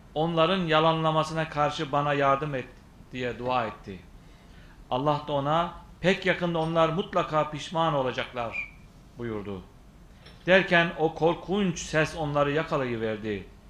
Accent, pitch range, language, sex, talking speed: native, 135-165 Hz, Turkish, male, 110 wpm